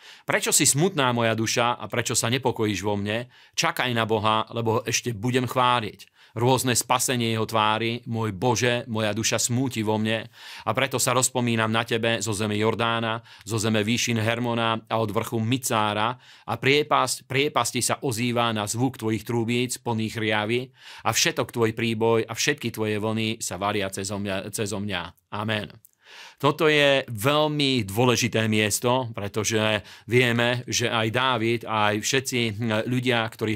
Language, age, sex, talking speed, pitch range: Slovak, 40-59, male, 155 wpm, 110-125 Hz